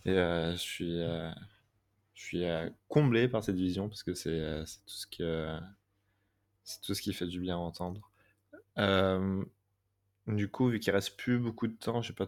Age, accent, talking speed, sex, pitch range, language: 20-39, French, 215 wpm, male, 90-105 Hz, French